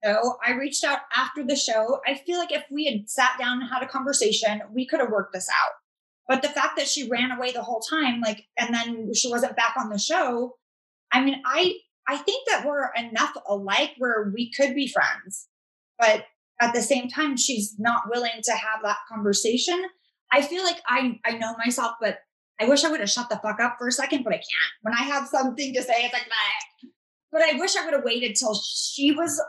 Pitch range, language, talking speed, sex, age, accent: 215-295 Hz, English, 230 wpm, female, 20-39, American